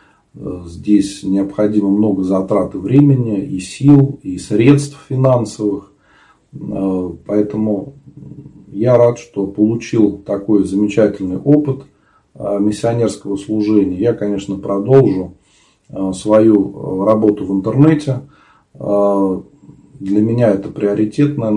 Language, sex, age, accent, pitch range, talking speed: Russian, male, 40-59, native, 100-135 Hz, 85 wpm